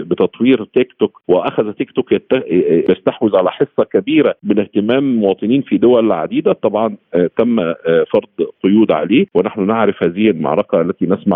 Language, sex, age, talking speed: Arabic, male, 50-69, 145 wpm